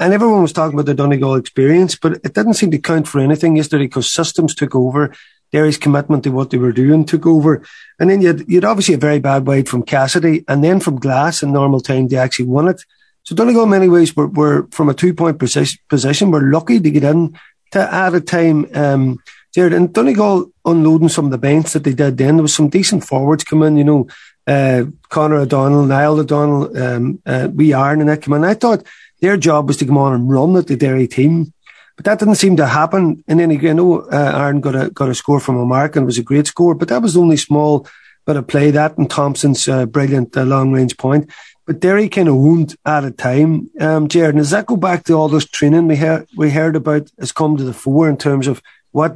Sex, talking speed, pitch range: male, 240 wpm, 140-165 Hz